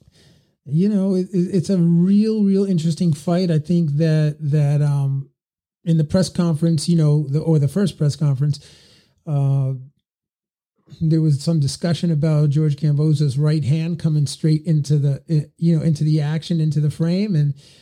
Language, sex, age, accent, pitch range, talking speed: English, male, 30-49, American, 150-175 Hz, 160 wpm